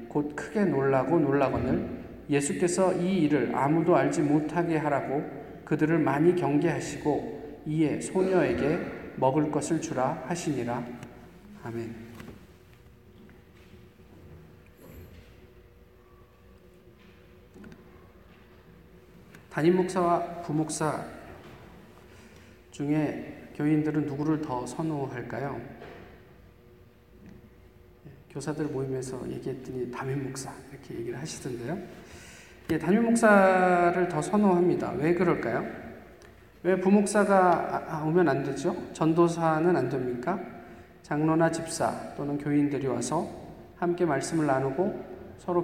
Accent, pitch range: native, 130-175 Hz